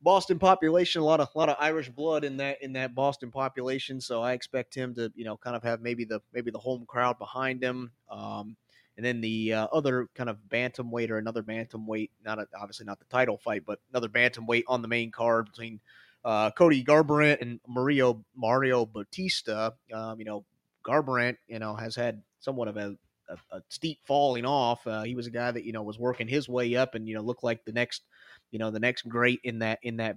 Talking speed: 225 wpm